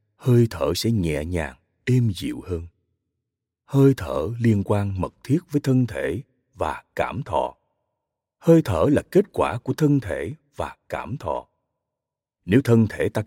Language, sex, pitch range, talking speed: Vietnamese, male, 105-140 Hz, 160 wpm